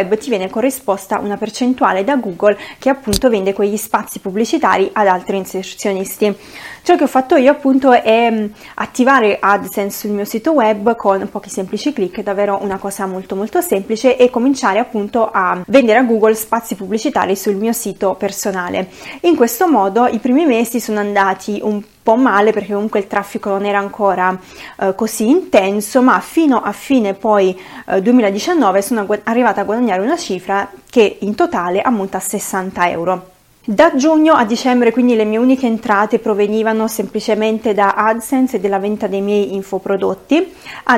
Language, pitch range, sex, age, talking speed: Italian, 200-250 Hz, female, 20-39, 170 wpm